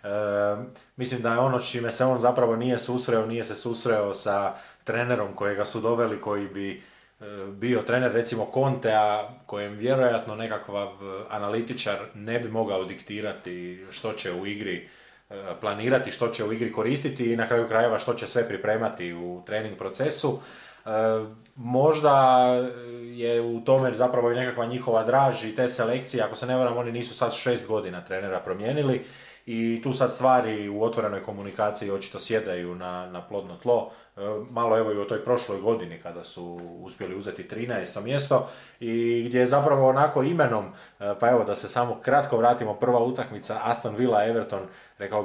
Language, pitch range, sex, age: Croatian, 105-125 Hz, male, 20-39